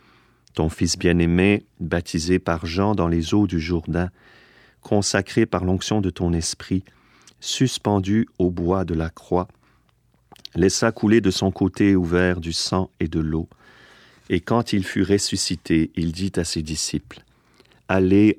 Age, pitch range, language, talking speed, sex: 40-59, 85-95 Hz, French, 145 wpm, male